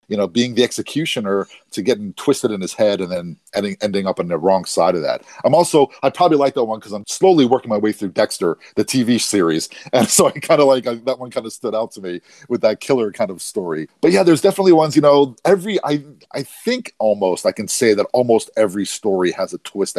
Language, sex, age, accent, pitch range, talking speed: English, male, 40-59, American, 105-150 Hz, 245 wpm